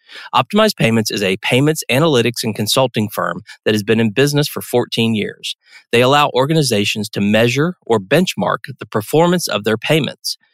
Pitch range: 105-140 Hz